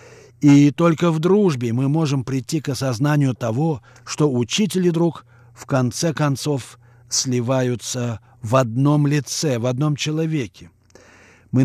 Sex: male